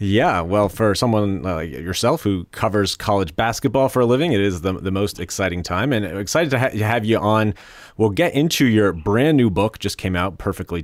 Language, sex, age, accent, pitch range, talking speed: English, male, 30-49, American, 85-110 Hz, 215 wpm